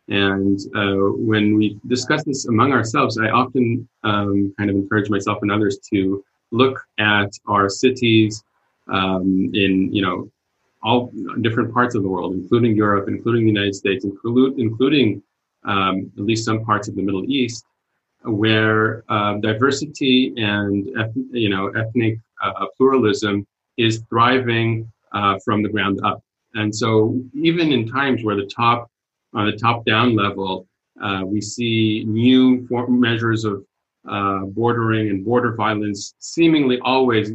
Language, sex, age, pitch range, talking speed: English, male, 30-49, 100-120 Hz, 145 wpm